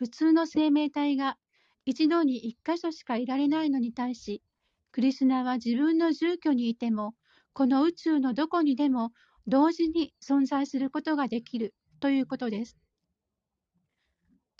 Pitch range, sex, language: 235-310 Hz, female, Japanese